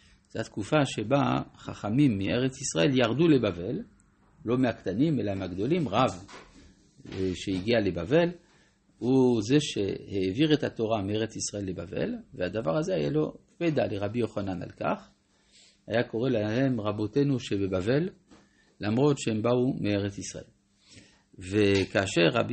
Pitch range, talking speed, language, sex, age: 105-140 Hz, 115 wpm, Hebrew, male, 50-69